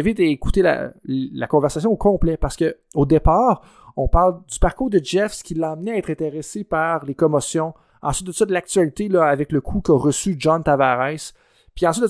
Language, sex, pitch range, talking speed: French, male, 140-175 Hz, 205 wpm